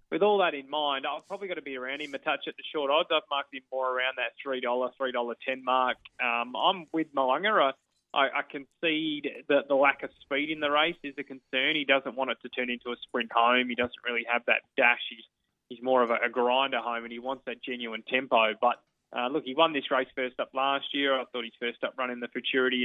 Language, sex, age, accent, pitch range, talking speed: English, male, 20-39, Australian, 125-145 Hz, 250 wpm